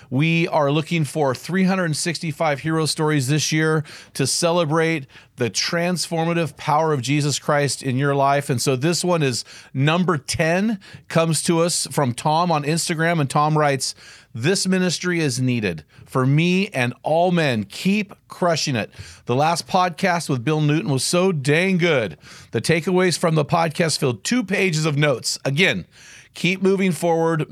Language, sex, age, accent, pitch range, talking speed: English, male, 40-59, American, 145-175 Hz, 160 wpm